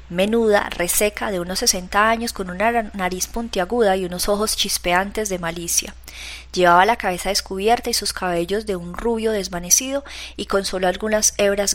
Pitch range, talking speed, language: 175-215 Hz, 165 wpm, Spanish